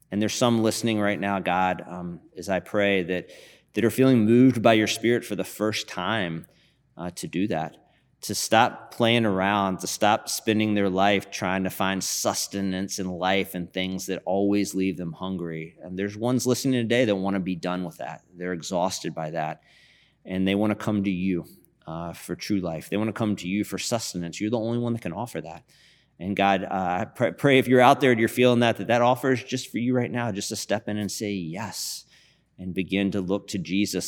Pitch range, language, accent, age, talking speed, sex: 90-110 Hz, English, American, 30-49, 225 wpm, male